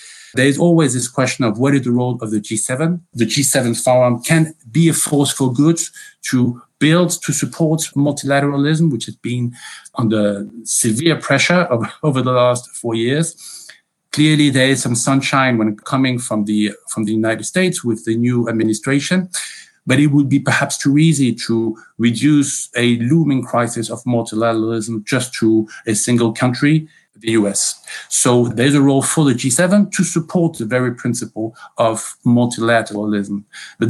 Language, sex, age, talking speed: English, male, 50-69, 160 wpm